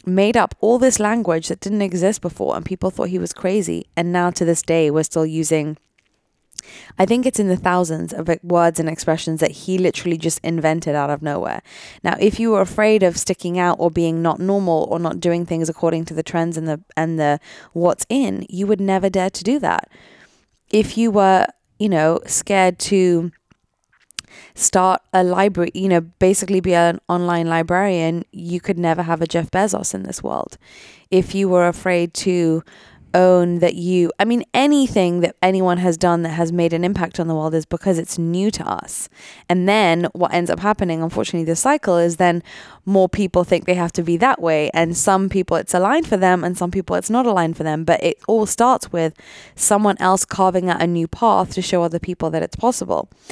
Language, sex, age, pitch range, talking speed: English, female, 20-39, 165-195 Hz, 205 wpm